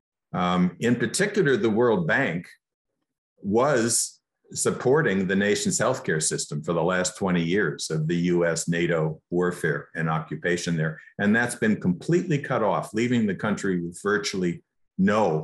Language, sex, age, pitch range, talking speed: English, male, 50-69, 90-130 Hz, 145 wpm